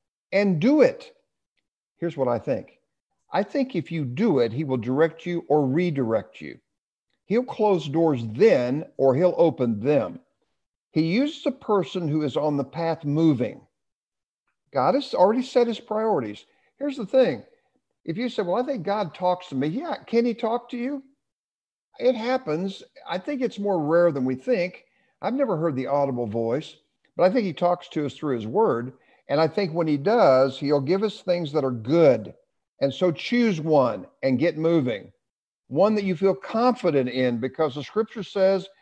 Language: English